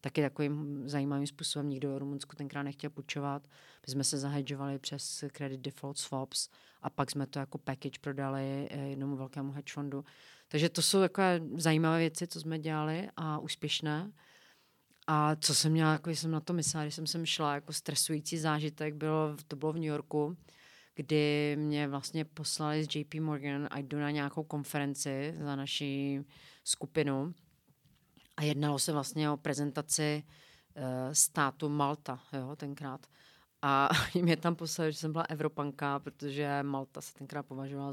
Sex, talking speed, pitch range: female, 155 wpm, 140-155 Hz